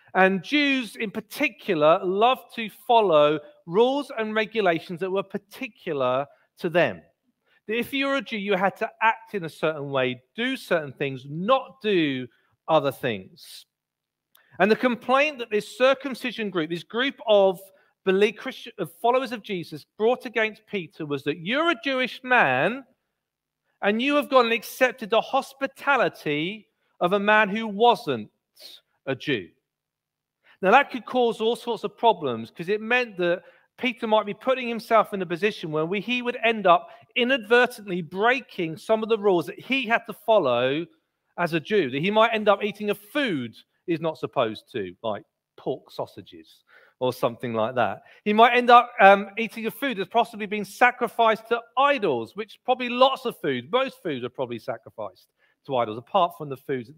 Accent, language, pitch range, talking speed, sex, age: British, English, 170-245 Hz, 170 wpm, male, 40-59